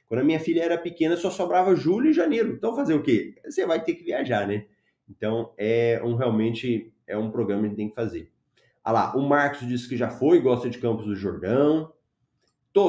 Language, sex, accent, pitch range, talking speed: Portuguese, male, Brazilian, 120-165 Hz, 225 wpm